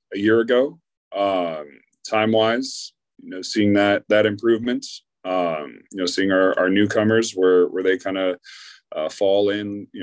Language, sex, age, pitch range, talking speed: English, male, 30-49, 95-145 Hz, 160 wpm